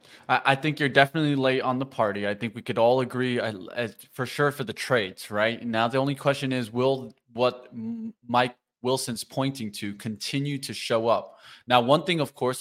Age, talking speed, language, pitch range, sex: 20-39, 190 wpm, English, 115-135 Hz, male